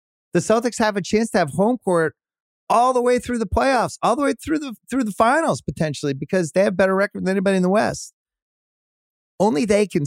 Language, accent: English, American